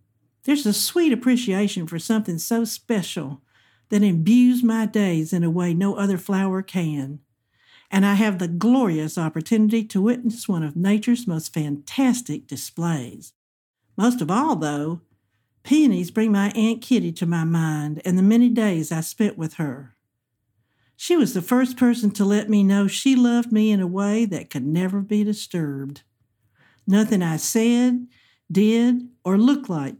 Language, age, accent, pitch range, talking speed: English, 60-79, American, 165-230 Hz, 160 wpm